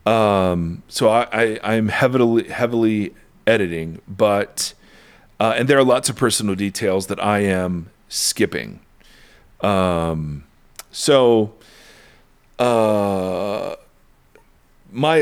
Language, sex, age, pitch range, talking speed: English, male, 40-59, 105-145 Hz, 100 wpm